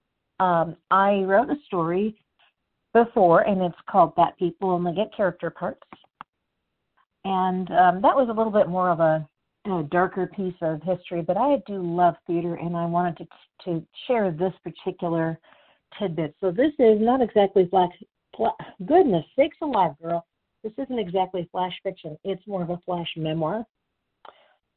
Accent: American